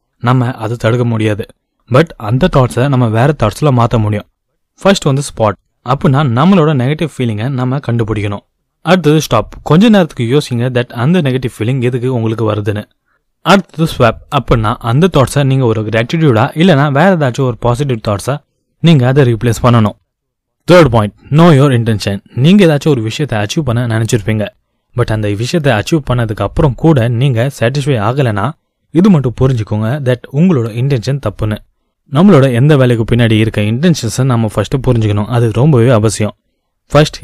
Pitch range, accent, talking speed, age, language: 110-145 Hz, native, 50 wpm, 20-39, Tamil